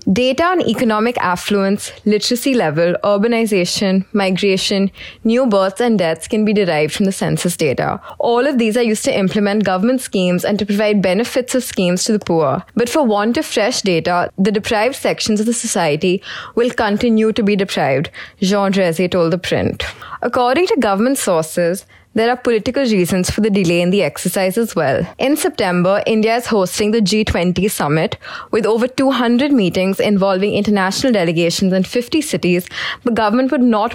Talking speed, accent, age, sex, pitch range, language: 170 wpm, Indian, 20-39, female, 185-235 Hz, English